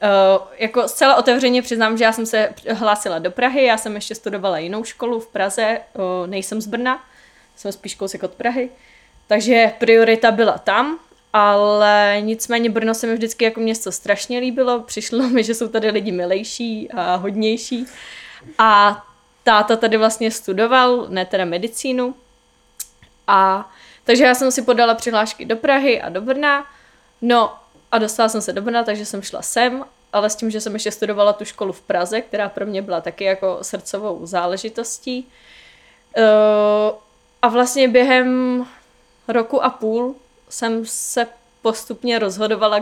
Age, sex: 20-39, female